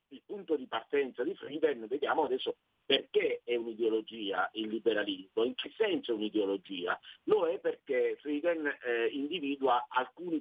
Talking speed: 145 wpm